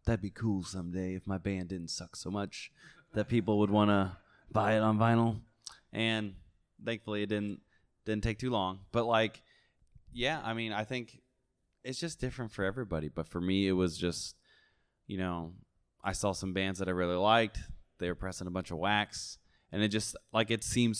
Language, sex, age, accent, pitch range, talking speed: English, male, 20-39, American, 95-115 Hz, 195 wpm